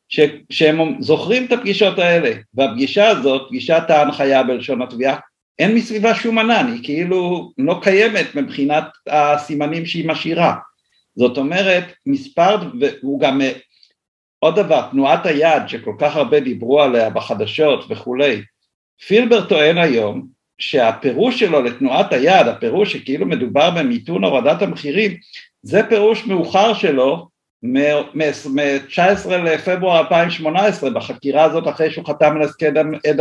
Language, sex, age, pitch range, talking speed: Hebrew, male, 60-79, 145-190 Hz, 120 wpm